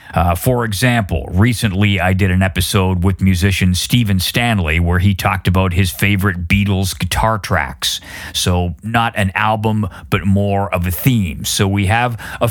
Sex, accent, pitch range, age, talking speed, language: male, American, 90-120 Hz, 40-59, 165 wpm, English